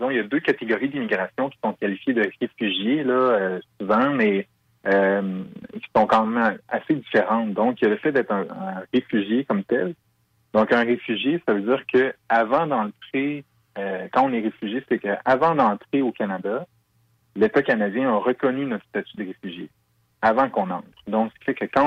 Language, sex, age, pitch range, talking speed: French, male, 30-49, 100-120 Hz, 190 wpm